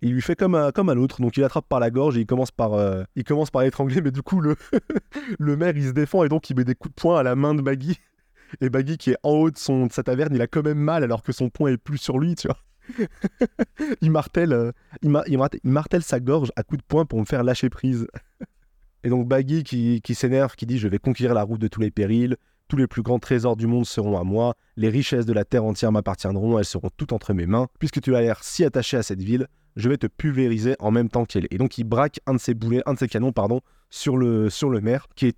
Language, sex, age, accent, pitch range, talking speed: French, male, 20-39, French, 110-140 Hz, 280 wpm